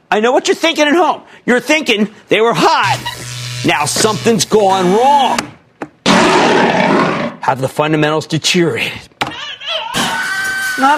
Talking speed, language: 115 wpm, English